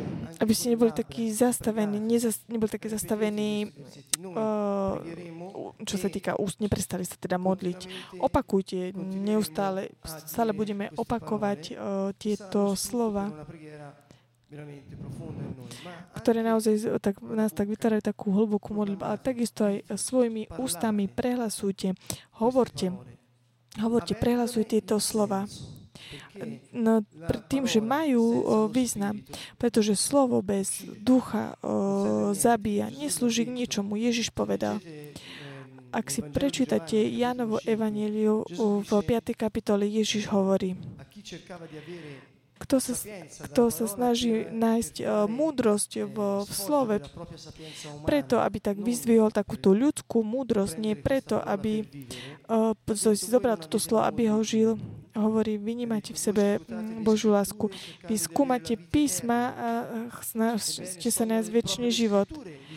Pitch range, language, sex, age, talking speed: 190-230 Hz, Slovak, female, 20-39, 105 wpm